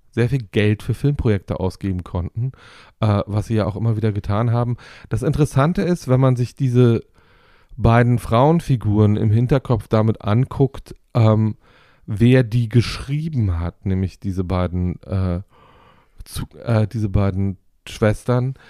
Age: 40-59